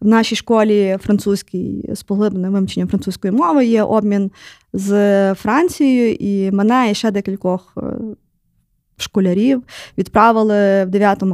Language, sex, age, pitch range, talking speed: Ukrainian, female, 20-39, 200-245 Hz, 115 wpm